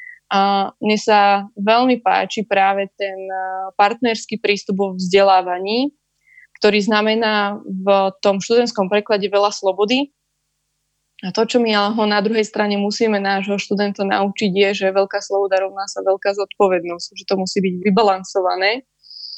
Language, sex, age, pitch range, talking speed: Slovak, female, 20-39, 195-215 Hz, 135 wpm